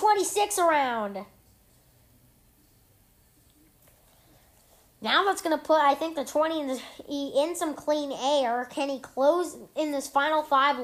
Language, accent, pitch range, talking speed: English, American, 235-295 Hz, 135 wpm